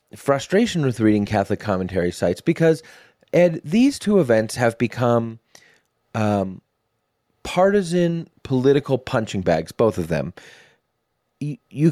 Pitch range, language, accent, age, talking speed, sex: 95-130 Hz, English, American, 30-49, 110 wpm, male